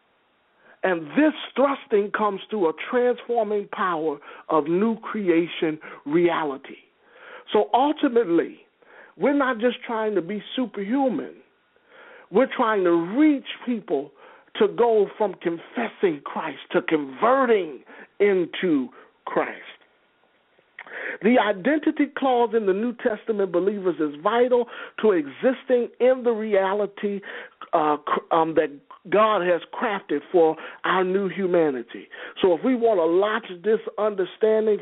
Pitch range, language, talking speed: 175-260 Hz, English, 115 wpm